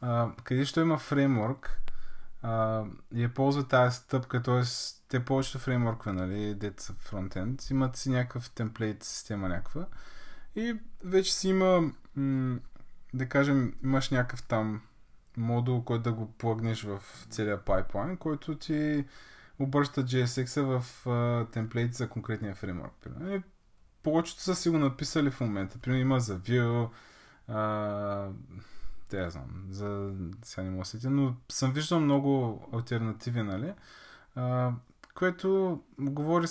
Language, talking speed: Bulgarian, 125 wpm